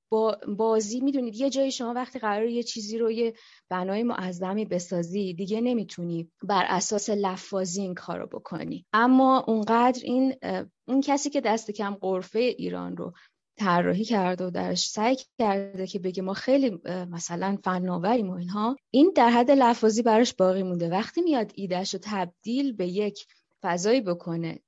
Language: Persian